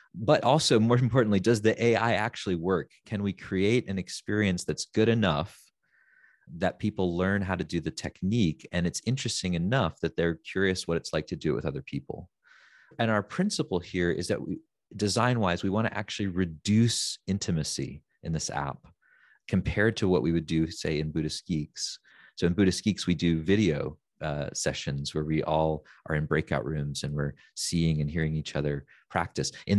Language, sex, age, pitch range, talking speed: English, male, 30-49, 80-100 Hz, 185 wpm